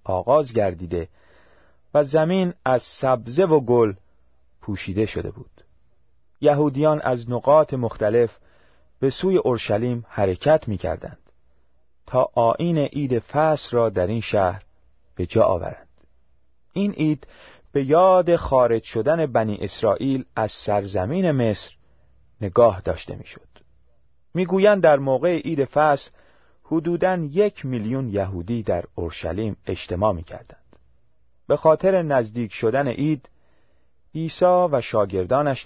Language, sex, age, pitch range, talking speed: Persian, male, 40-59, 90-145 Hz, 115 wpm